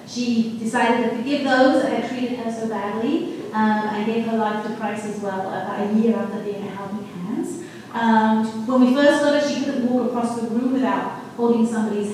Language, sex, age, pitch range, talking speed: English, female, 30-49, 210-260 Hz, 215 wpm